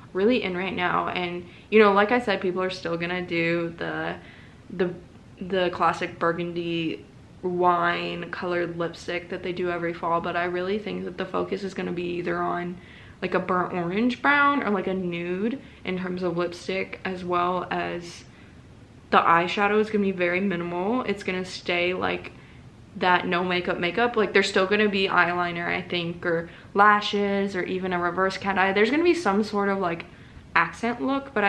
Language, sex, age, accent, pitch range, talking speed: English, female, 20-39, American, 175-205 Hz, 190 wpm